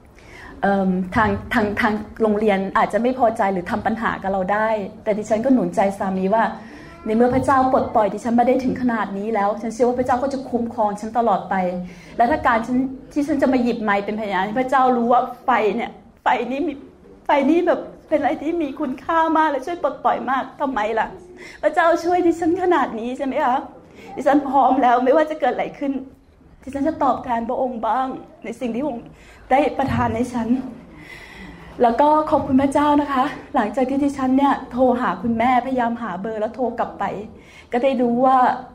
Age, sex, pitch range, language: 20-39, female, 220-275 Hz, Thai